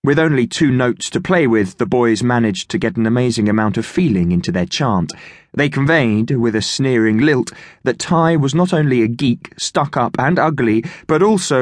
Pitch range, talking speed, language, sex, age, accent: 115-165 Hz, 195 wpm, English, male, 20-39, British